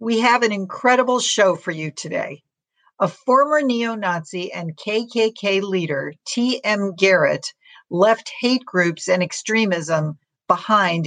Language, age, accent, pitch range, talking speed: English, 50-69, American, 170-230 Hz, 120 wpm